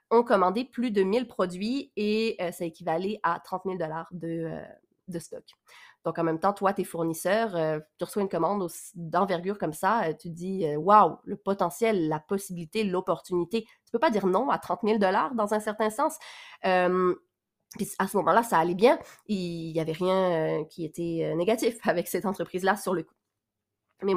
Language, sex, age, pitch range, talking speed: French, female, 30-49, 175-220 Hz, 200 wpm